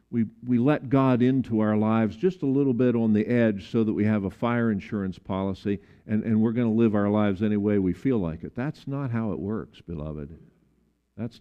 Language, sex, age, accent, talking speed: English, male, 50-69, American, 225 wpm